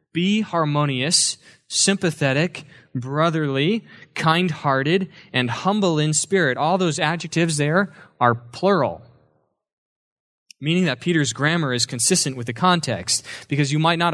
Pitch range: 135-180 Hz